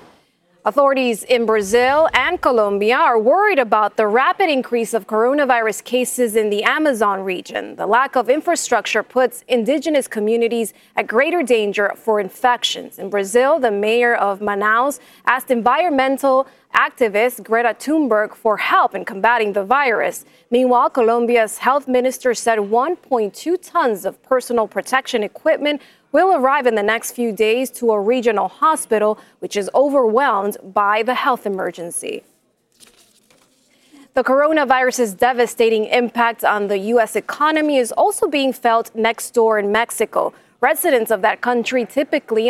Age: 20-39